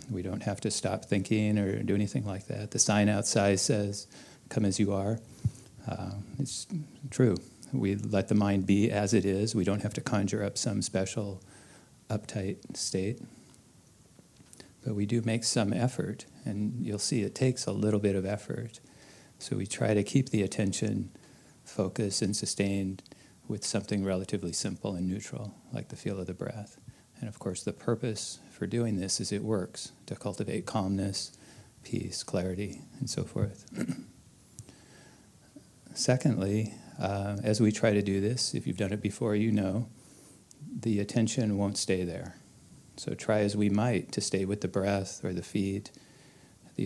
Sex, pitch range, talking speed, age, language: male, 100-115 Hz, 165 wpm, 40-59, English